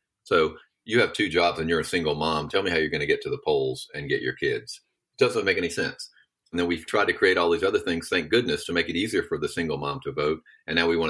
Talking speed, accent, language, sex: 295 wpm, American, English, male